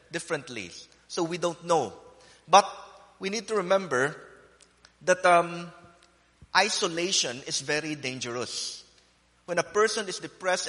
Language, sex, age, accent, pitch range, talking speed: English, male, 30-49, Filipino, 150-180 Hz, 120 wpm